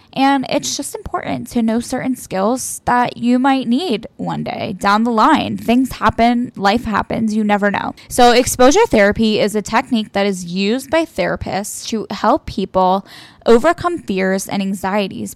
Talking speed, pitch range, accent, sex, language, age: 165 wpm, 200-245 Hz, American, female, English, 10-29